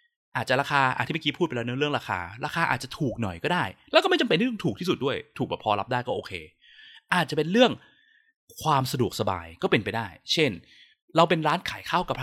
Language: Thai